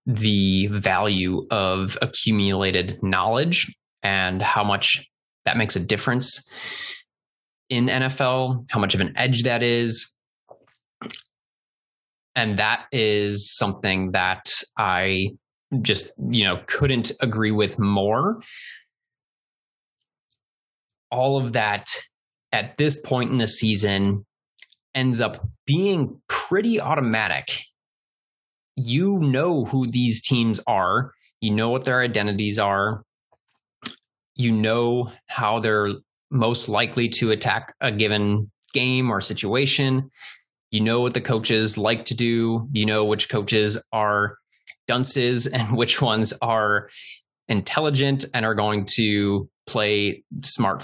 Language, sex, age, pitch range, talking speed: English, male, 20-39, 105-130 Hz, 115 wpm